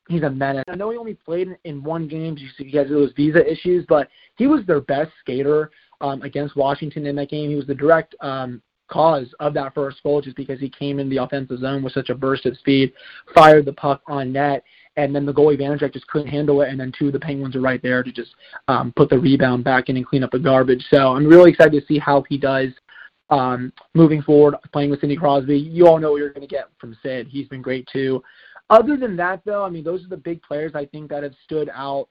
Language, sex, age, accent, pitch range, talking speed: English, male, 20-39, American, 135-160 Hz, 250 wpm